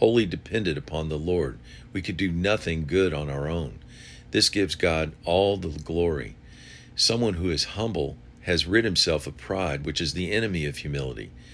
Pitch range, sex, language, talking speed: 75-95 Hz, male, English, 175 wpm